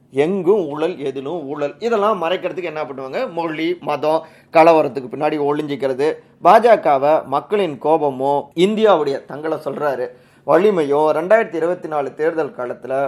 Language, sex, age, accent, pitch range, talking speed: Tamil, male, 30-49, native, 145-185 Hz, 105 wpm